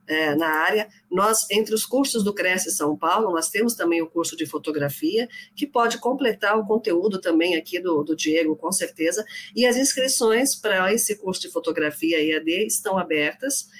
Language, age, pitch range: Portuguese, 50-69, 165-220 Hz